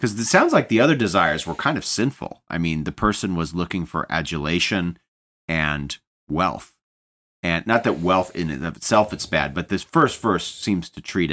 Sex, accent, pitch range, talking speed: male, American, 70-90 Hz, 200 wpm